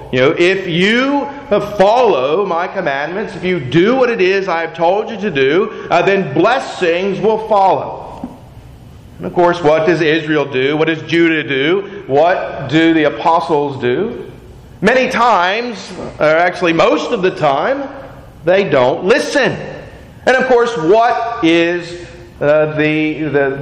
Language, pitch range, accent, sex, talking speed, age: English, 155-205 Hz, American, male, 145 wpm, 40-59